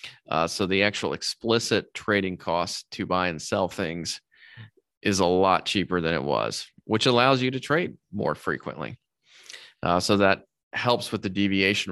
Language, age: English, 20-39